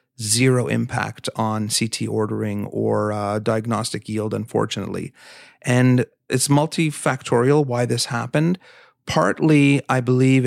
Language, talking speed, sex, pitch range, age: English, 110 wpm, male, 120-135 Hz, 40-59